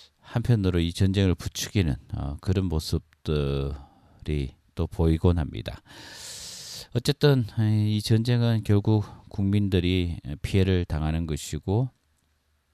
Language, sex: Korean, male